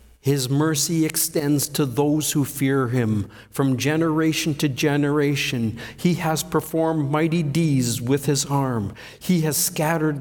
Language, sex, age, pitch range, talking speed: English, male, 50-69, 125-165 Hz, 135 wpm